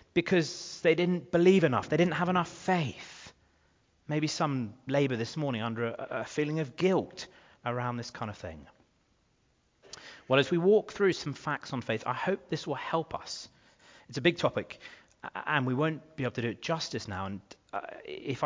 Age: 30-49